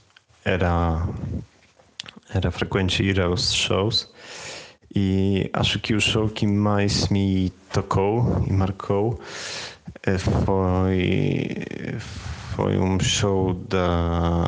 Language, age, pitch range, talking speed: Portuguese, 30-49, 90-110 Hz, 85 wpm